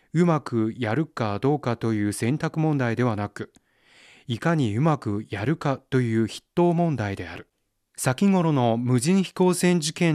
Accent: native